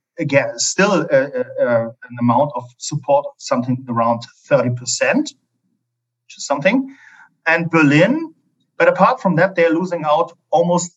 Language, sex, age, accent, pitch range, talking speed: English, male, 40-59, German, 135-185 Hz, 130 wpm